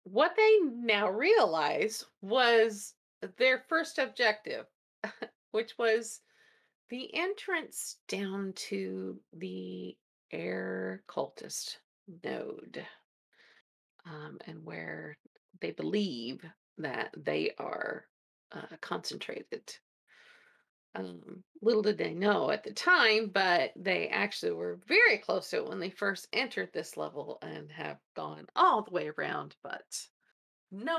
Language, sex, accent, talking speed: English, female, American, 115 wpm